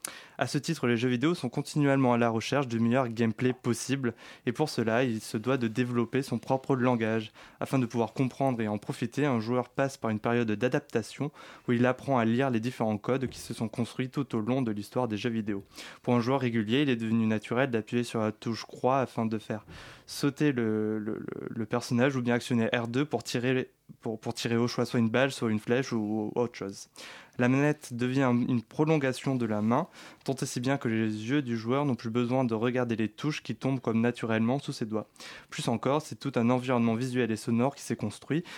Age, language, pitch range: 20-39, French, 115-135 Hz